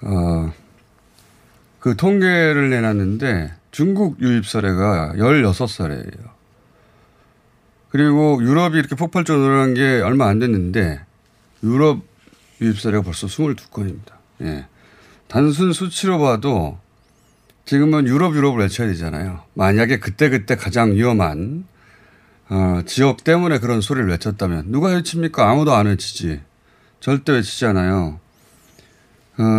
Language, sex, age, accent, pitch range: Korean, male, 30-49, native, 100-150 Hz